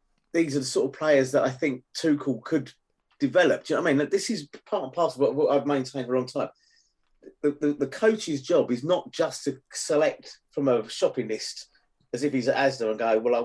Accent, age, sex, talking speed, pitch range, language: British, 30-49, male, 235 wpm, 125-175 Hz, English